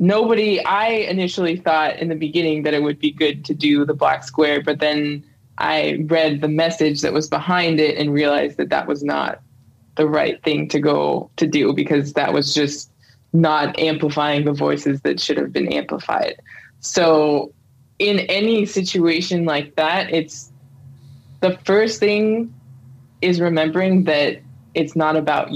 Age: 20-39